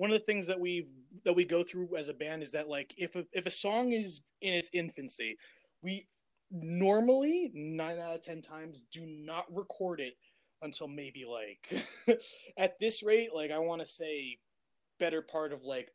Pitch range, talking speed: 150-190 Hz, 190 wpm